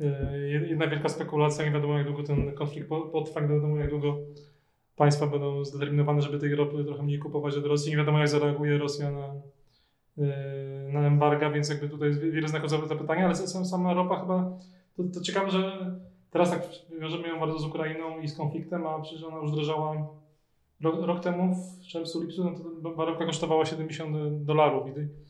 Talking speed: 180 wpm